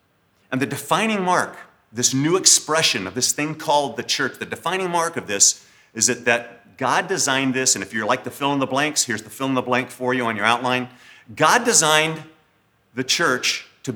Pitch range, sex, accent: 120-155 Hz, male, American